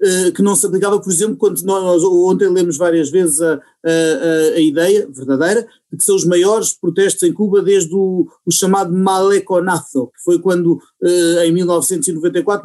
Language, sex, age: Portuguese, male, 30-49